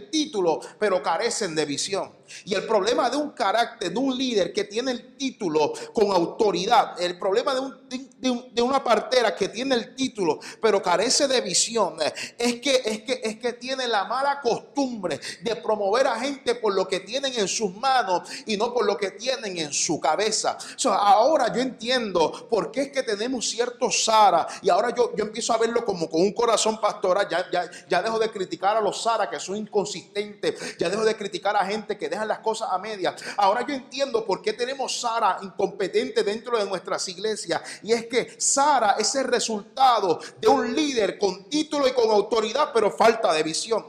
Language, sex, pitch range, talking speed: Spanish, male, 200-260 Hz, 200 wpm